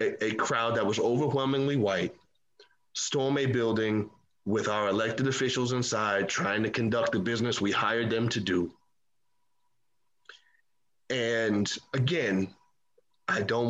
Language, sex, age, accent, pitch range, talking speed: English, male, 30-49, American, 110-135 Hz, 125 wpm